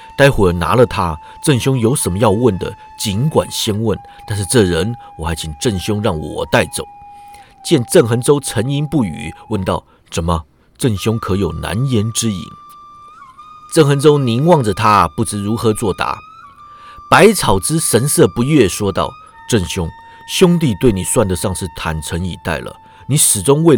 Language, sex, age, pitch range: Chinese, male, 50-69, 90-145 Hz